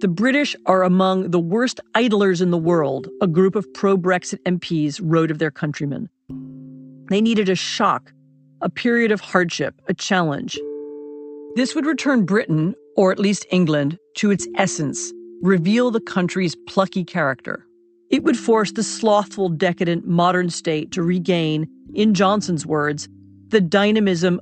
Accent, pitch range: American, 150-200 Hz